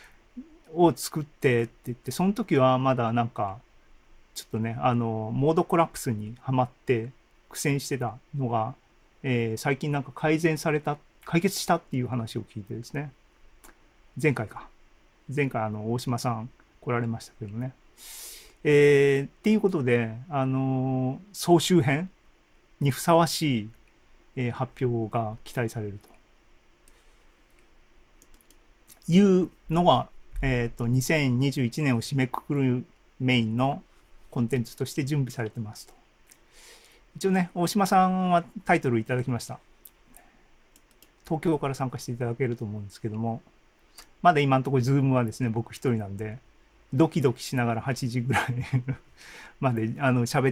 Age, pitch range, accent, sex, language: 40-59, 120-155 Hz, native, male, Japanese